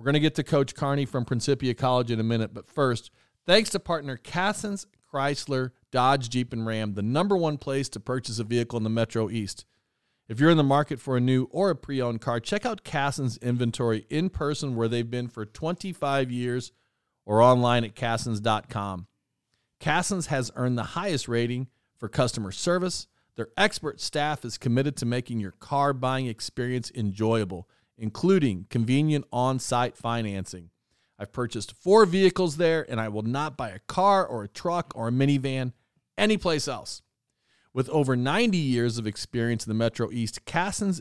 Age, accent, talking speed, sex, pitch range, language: 40-59, American, 175 wpm, male, 115-150 Hz, English